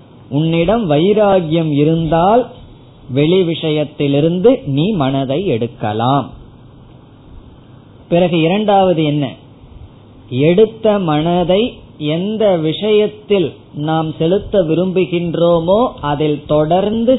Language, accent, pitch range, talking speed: Tamil, native, 130-175 Hz, 65 wpm